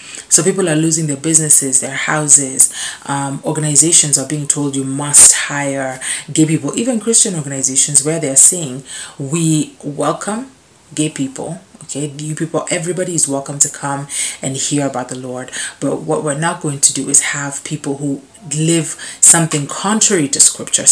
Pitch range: 135-155 Hz